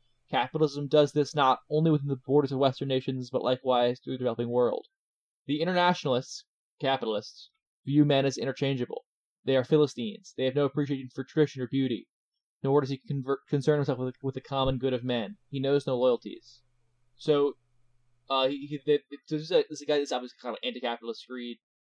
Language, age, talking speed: English, 20-39, 180 wpm